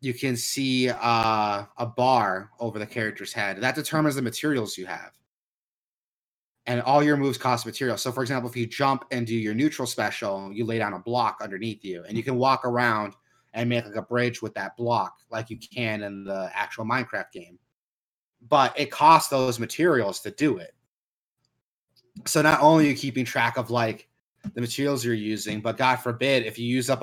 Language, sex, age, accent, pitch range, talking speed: English, male, 30-49, American, 110-130 Hz, 195 wpm